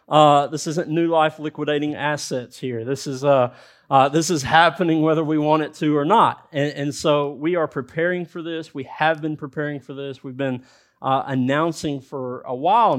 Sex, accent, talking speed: male, American, 200 wpm